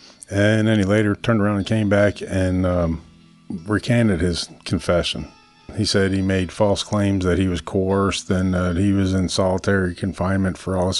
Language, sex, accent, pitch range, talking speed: English, male, American, 90-100 Hz, 190 wpm